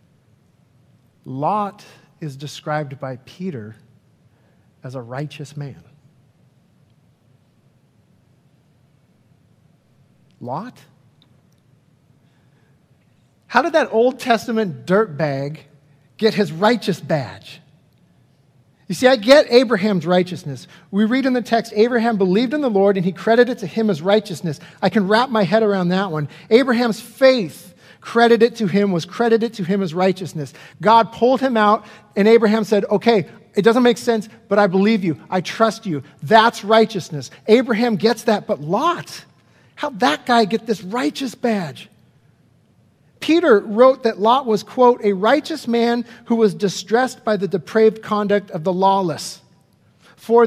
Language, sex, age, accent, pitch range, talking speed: English, male, 50-69, American, 155-230 Hz, 140 wpm